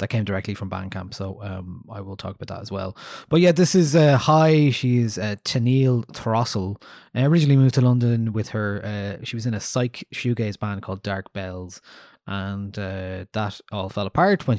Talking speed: 205 wpm